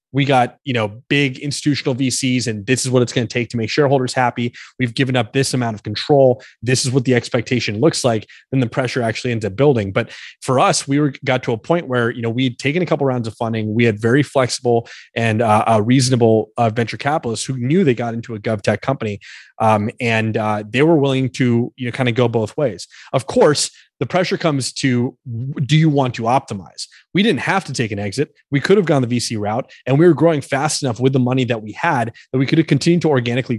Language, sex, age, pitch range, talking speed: English, male, 20-39, 115-140 Hz, 245 wpm